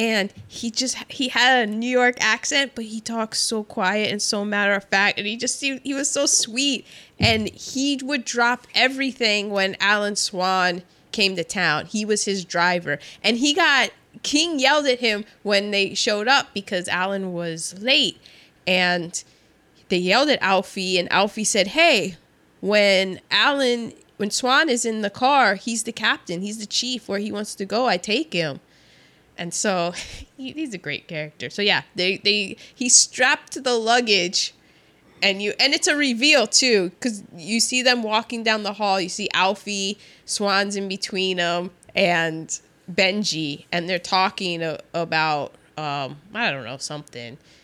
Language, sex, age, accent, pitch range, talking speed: English, female, 20-39, American, 180-240 Hz, 170 wpm